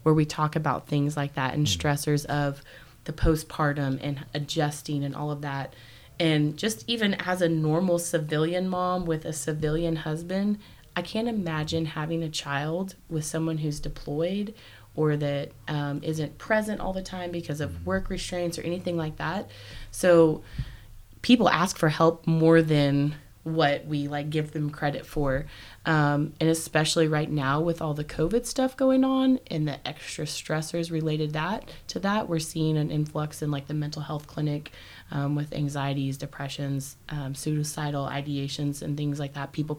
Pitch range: 145-165 Hz